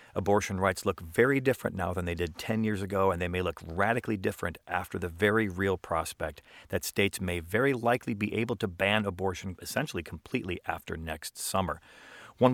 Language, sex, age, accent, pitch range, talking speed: English, male, 40-59, American, 90-110 Hz, 185 wpm